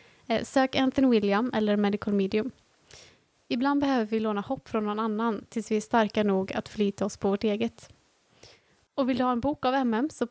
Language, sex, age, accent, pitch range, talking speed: Swedish, female, 20-39, native, 210-260 Hz, 200 wpm